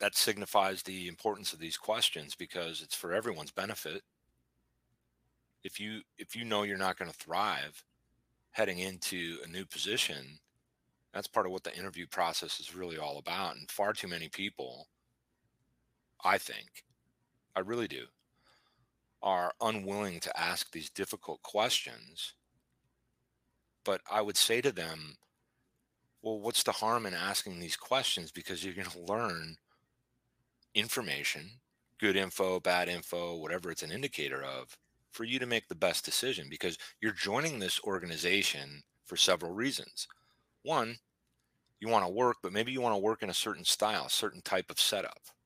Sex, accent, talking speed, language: male, American, 155 wpm, English